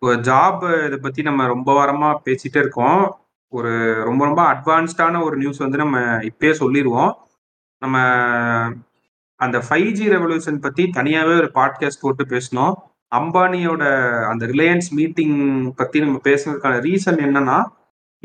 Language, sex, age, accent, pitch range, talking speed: Tamil, male, 30-49, native, 125-165 Hz, 125 wpm